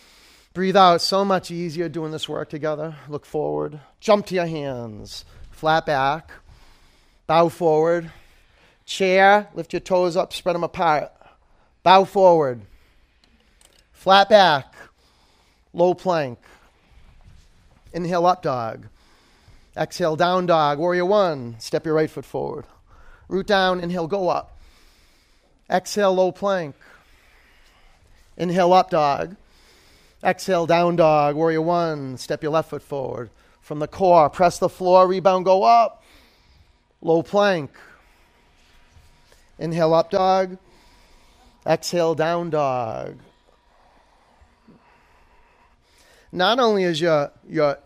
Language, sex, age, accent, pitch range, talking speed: English, male, 30-49, American, 150-185 Hz, 110 wpm